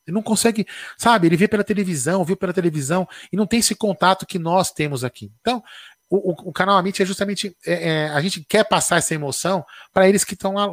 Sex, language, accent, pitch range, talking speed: male, Portuguese, Brazilian, 150-195 Hz, 220 wpm